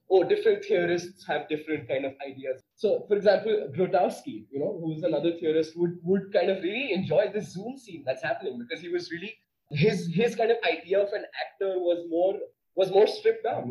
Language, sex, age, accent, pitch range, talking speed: English, male, 20-39, Indian, 150-210 Hz, 200 wpm